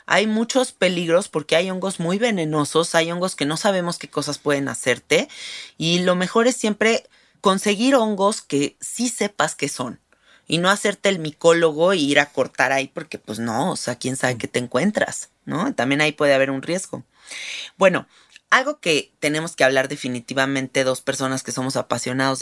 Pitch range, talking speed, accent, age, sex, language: 135-175 Hz, 180 wpm, Mexican, 30-49, female, Spanish